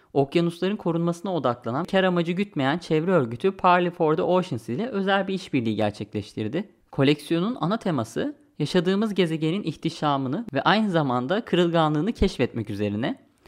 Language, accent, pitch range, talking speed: Turkish, native, 135-185 Hz, 130 wpm